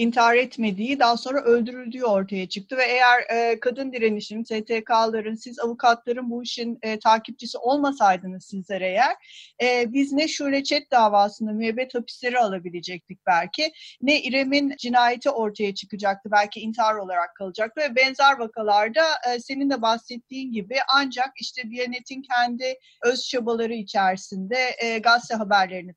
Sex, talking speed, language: female, 135 wpm, Turkish